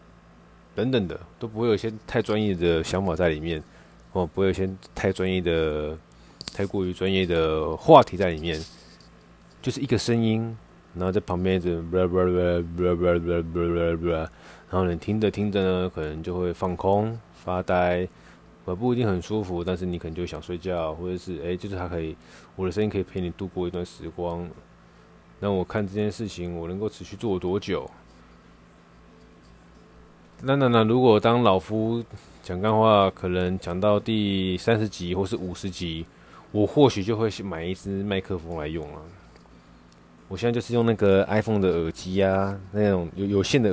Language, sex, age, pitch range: Chinese, male, 20-39, 85-100 Hz